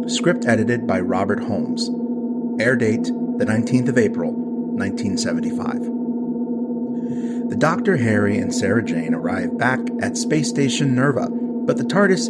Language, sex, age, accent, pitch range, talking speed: English, male, 30-49, American, 235-245 Hz, 130 wpm